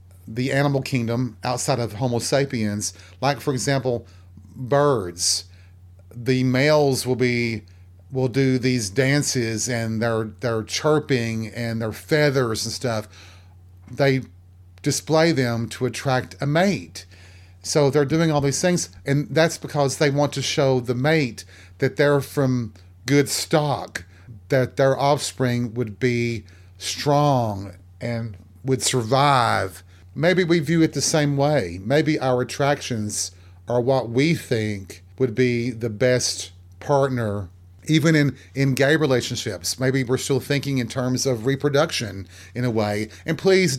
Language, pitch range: English, 105-140 Hz